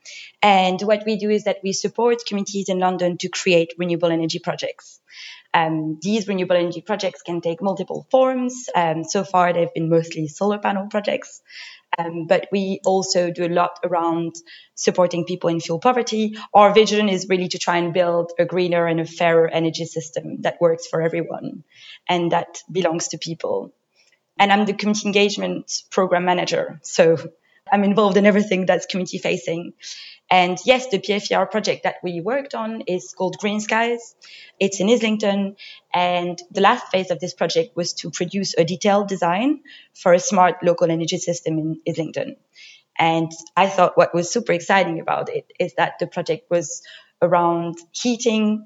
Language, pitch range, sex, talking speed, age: English, 170-205 Hz, female, 170 wpm, 20-39